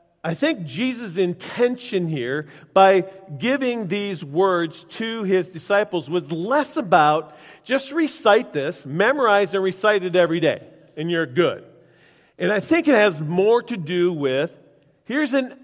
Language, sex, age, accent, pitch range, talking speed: English, male, 40-59, American, 165-210 Hz, 145 wpm